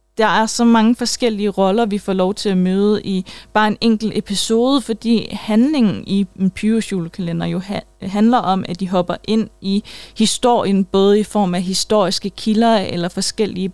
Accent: native